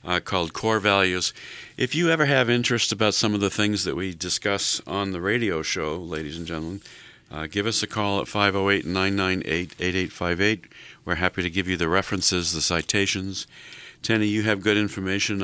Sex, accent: male, American